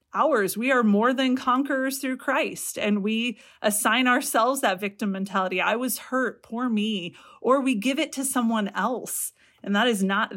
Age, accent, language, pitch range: 30-49, American, English, 195-265 Hz